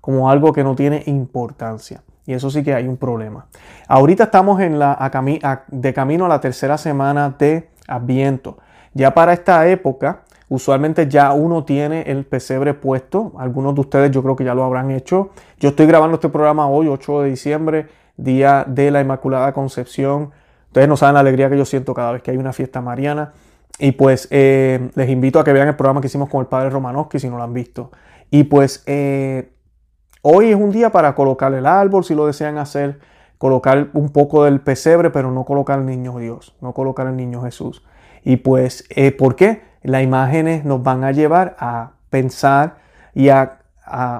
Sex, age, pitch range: male, 30-49, 130-155 Hz